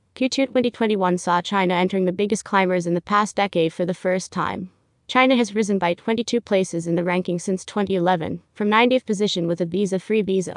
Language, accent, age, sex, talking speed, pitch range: English, American, 20-39, female, 195 wpm, 180-210 Hz